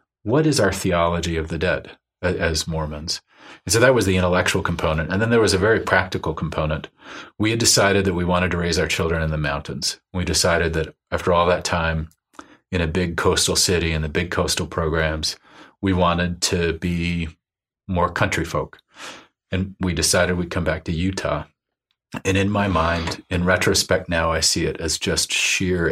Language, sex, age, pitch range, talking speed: English, male, 40-59, 80-95 Hz, 190 wpm